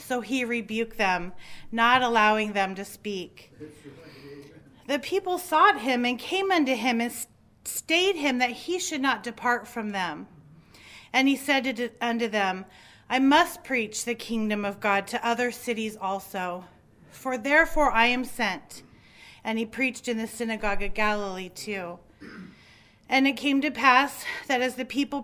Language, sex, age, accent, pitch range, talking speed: English, female, 40-59, American, 215-265 Hz, 155 wpm